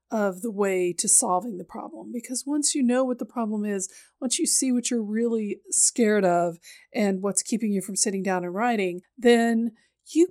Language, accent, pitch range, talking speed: English, American, 210-265 Hz, 200 wpm